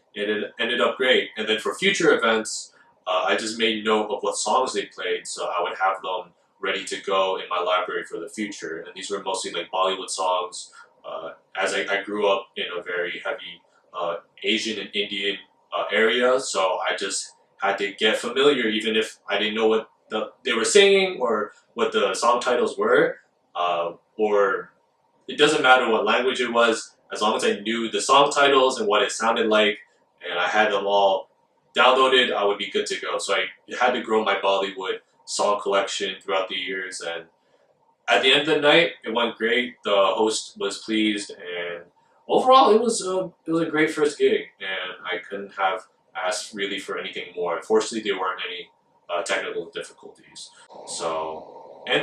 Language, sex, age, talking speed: English, male, 20-39, 195 wpm